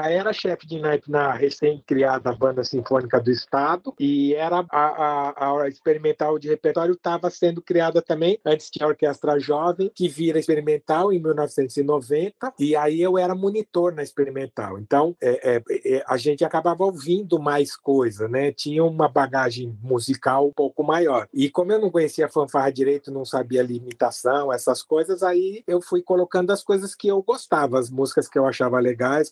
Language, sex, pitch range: Portuguese, male, 145-185 Hz